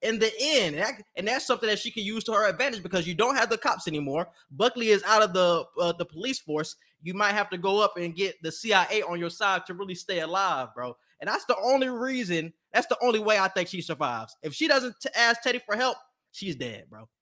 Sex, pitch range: male, 175-245 Hz